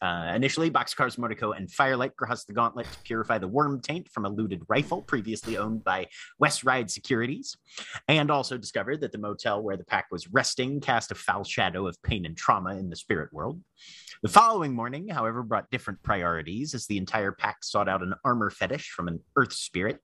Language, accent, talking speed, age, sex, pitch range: English, American, 200 wpm, 30-49, male, 100-145 Hz